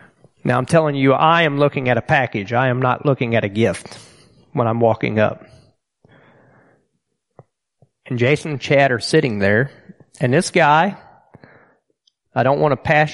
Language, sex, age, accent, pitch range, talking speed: English, male, 40-59, American, 125-155 Hz, 165 wpm